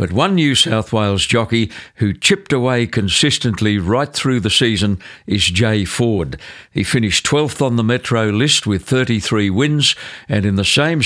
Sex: male